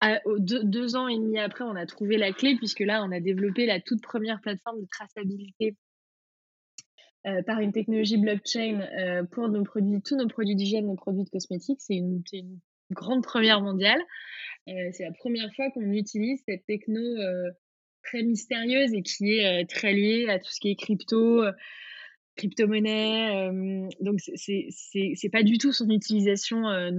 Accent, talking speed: French, 190 wpm